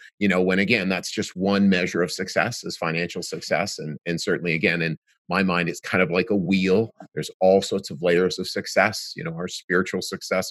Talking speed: 215 wpm